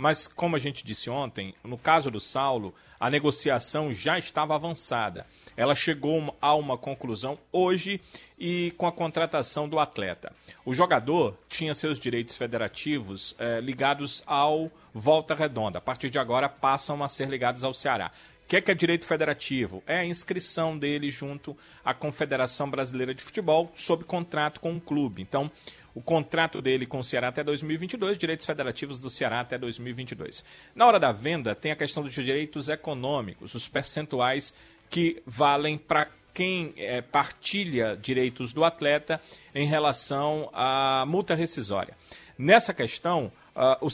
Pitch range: 130-160 Hz